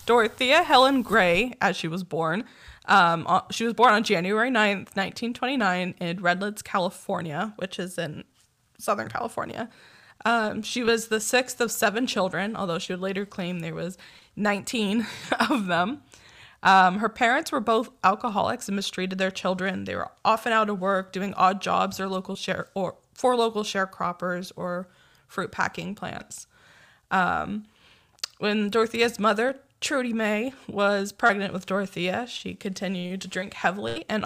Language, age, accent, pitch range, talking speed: English, 10-29, American, 185-225 Hz, 155 wpm